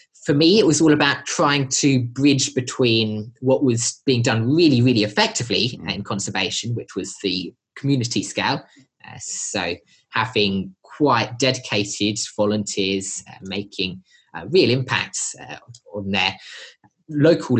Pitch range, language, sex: 100-130 Hz, English, male